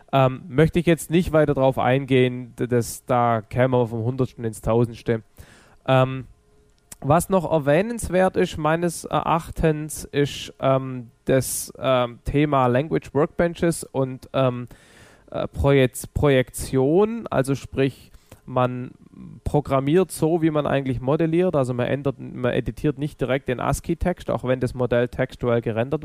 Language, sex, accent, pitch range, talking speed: German, male, German, 125-155 Hz, 135 wpm